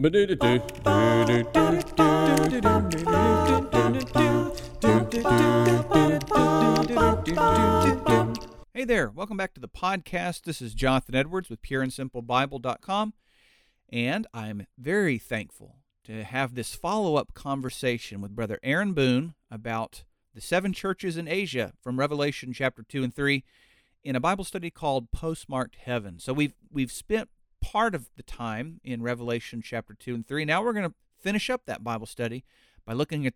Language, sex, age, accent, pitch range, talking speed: English, male, 50-69, American, 115-160 Hz, 130 wpm